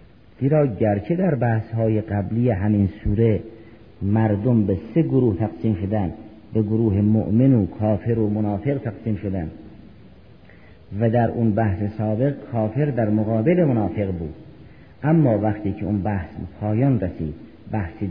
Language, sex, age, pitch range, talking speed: Persian, male, 50-69, 100-130 Hz, 135 wpm